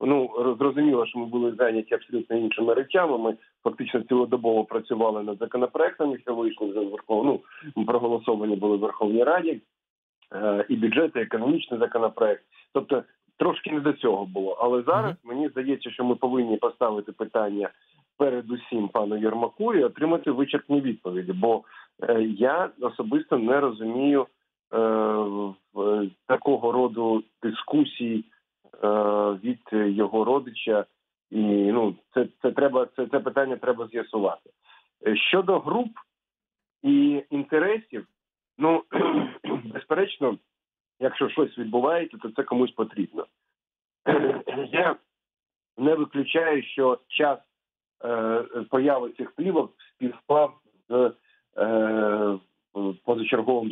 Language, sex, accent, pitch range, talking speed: Ukrainian, male, native, 110-140 Hz, 110 wpm